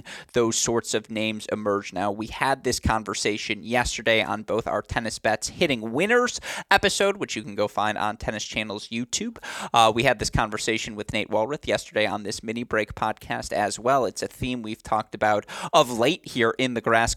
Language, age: English, 30-49